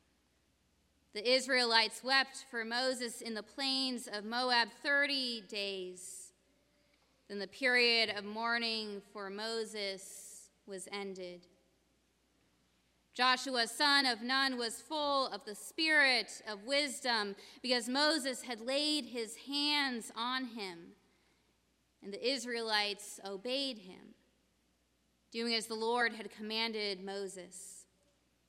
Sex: female